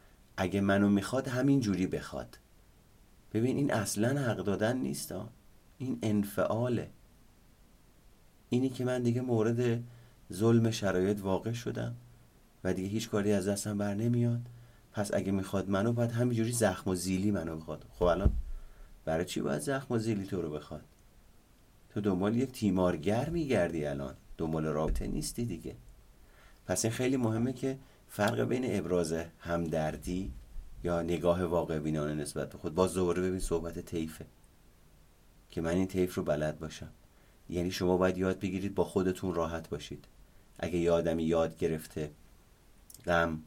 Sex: male